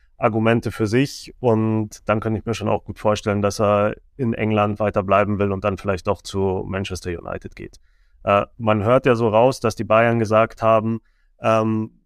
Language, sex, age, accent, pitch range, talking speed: German, male, 20-39, German, 105-120 Hz, 195 wpm